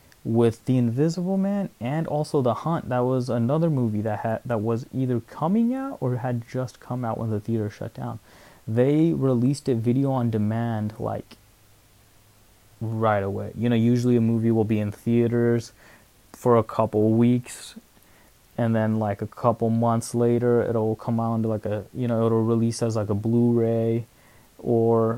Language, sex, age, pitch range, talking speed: English, male, 20-39, 110-130 Hz, 175 wpm